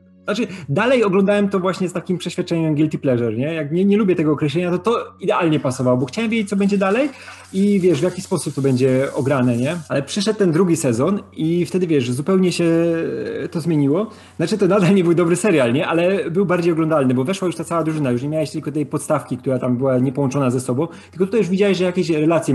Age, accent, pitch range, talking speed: 30-49, native, 130-180 Hz, 225 wpm